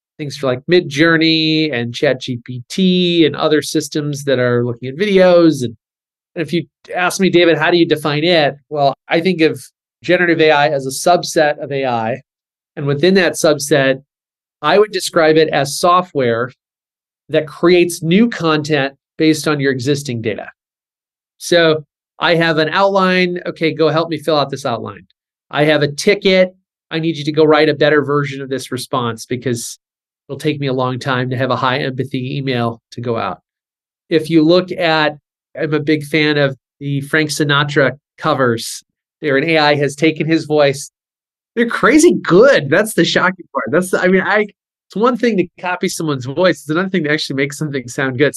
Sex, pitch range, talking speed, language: male, 140-170 Hz, 185 wpm, English